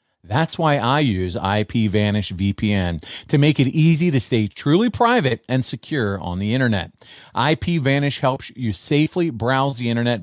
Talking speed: 155 wpm